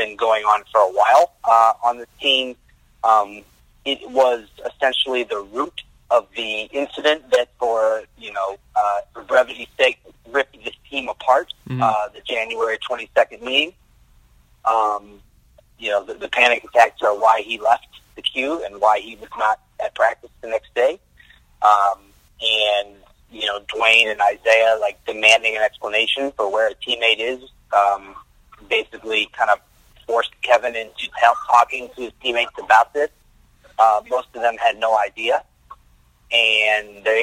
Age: 30-49